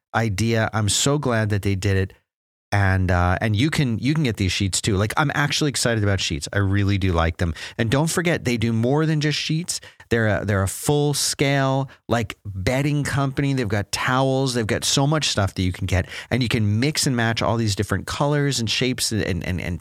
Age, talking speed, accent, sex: 30-49, 230 wpm, American, male